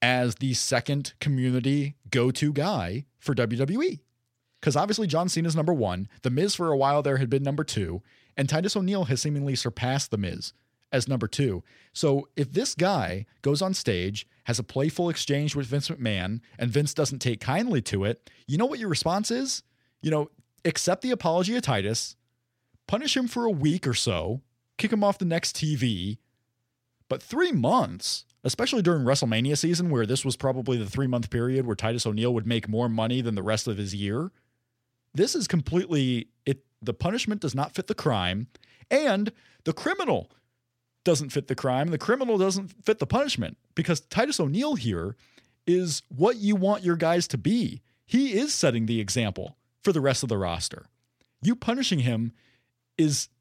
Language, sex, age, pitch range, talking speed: English, male, 30-49, 120-170 Hz, 175 wpm